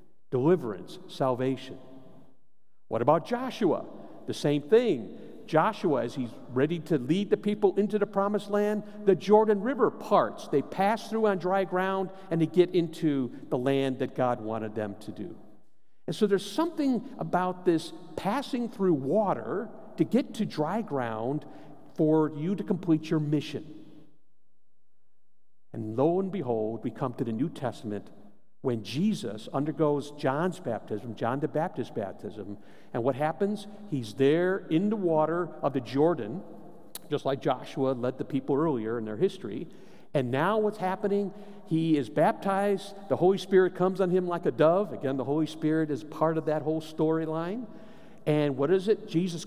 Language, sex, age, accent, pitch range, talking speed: English, male, 50-69, American, 135-195 Hz, 160 wpm